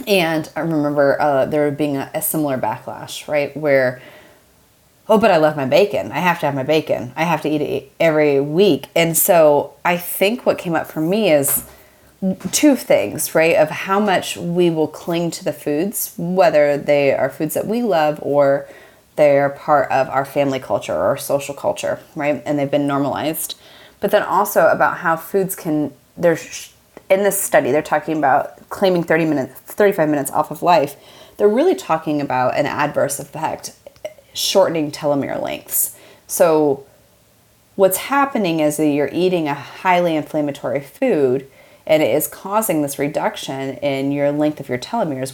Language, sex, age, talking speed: English, female, 30-49, 175 wpm